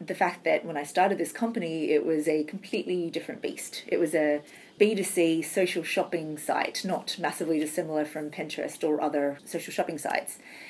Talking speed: 175 wpm